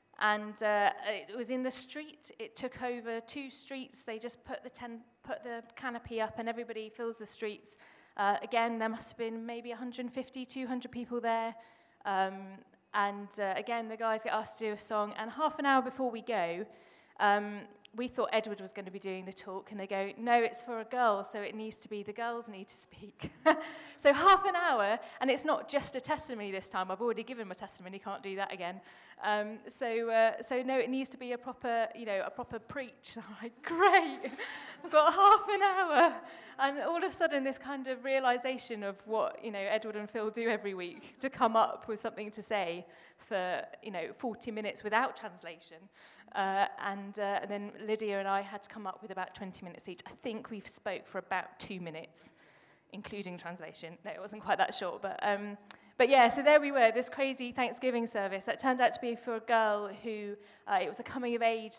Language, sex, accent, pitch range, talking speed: English, female, British, 200-250 Hz, 220 wpm